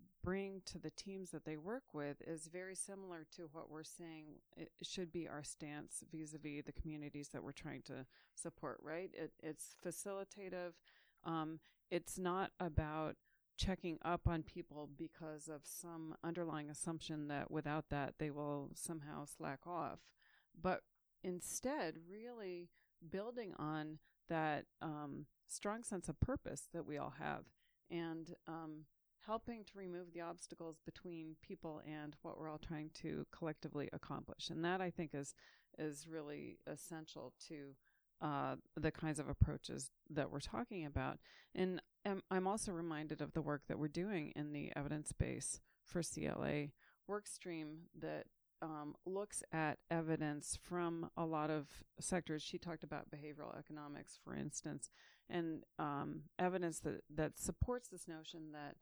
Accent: American